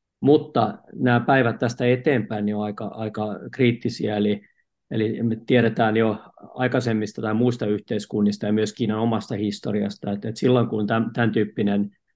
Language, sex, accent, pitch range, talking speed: Finnish, male, native, 105-120 Hz, 155 wpm